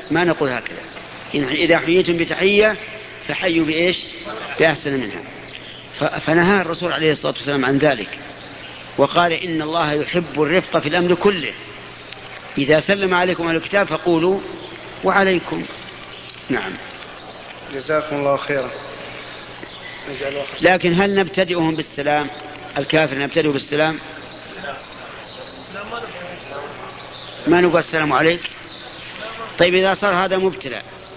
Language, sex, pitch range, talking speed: Arabic, male, 150-185 Hz, 100 wpm